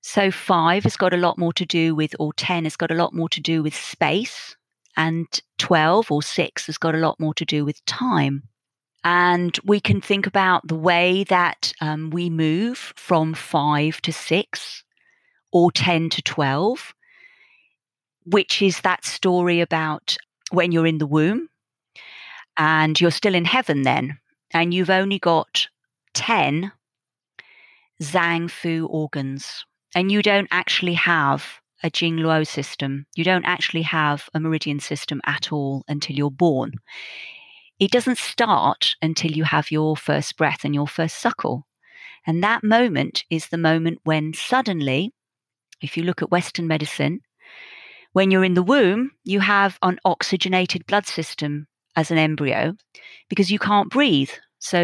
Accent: British